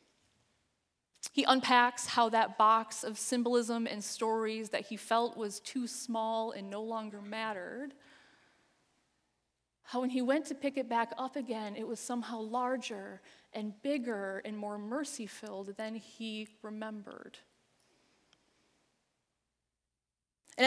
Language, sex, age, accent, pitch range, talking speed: English, female, 20-39, American, 215-270 Hz, 120 wpm